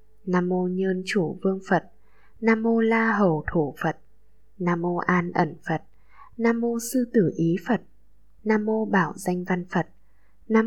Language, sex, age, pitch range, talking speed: Vietnamese, female, 10-29, 165-210 Hz, 170 wpm